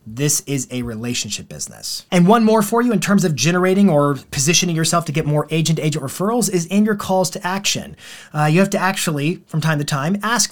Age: 30-49